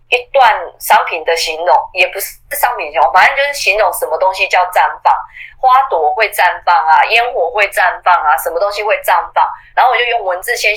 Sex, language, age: female, Chinese, 20-39